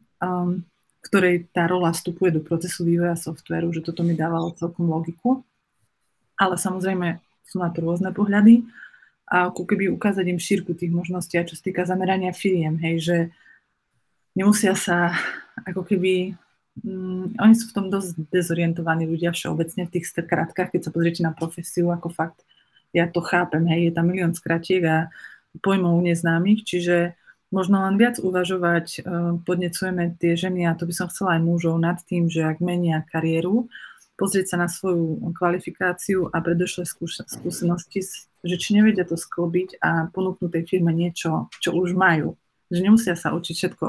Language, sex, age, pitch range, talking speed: Slovak, female, 30-49, 170-185 Hz, 160 wpm